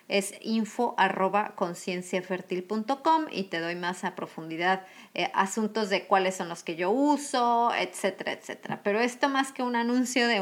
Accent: Mexican